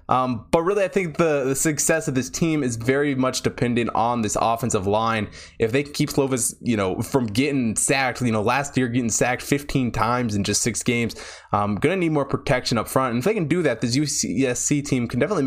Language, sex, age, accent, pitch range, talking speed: English, male, 20-39, American, 105-135 Hz, 230 wpm